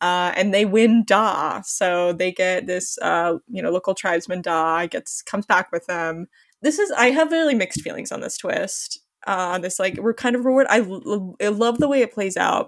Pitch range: 180-230 Hz